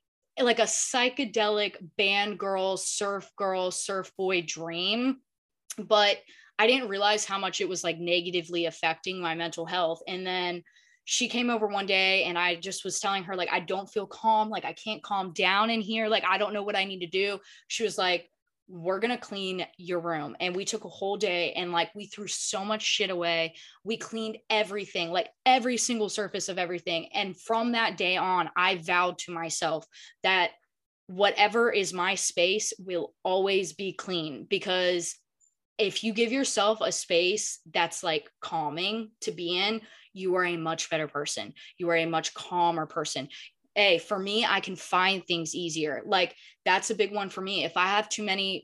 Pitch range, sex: 175-210 Hz, female